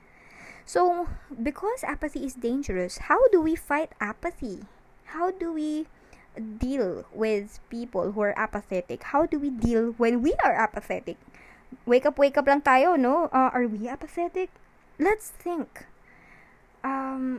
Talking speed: 140 wpm